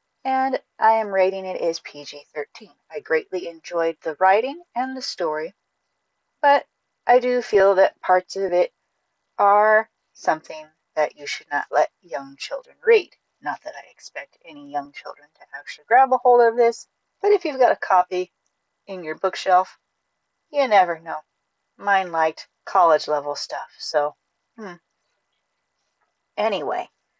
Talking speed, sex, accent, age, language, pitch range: 150 wpm, female, American, 40-59, English, 180-265 Hz